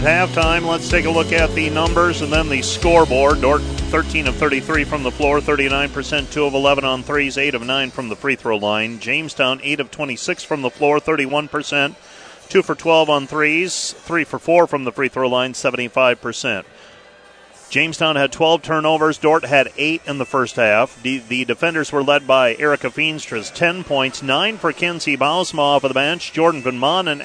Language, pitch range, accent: English, 120-150 Hz, American